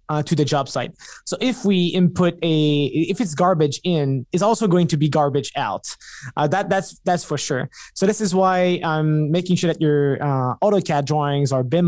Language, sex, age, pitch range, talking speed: English, male, 20-39, 145-185 Hz, 205 wpm